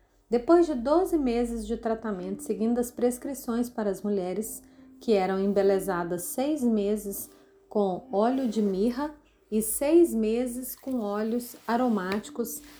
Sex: female